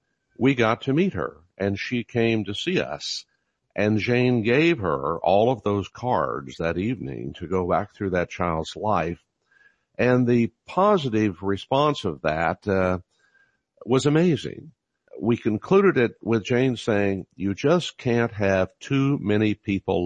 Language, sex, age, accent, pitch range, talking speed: English, male, 60-79, American, 95-125 Hz, 150 wpm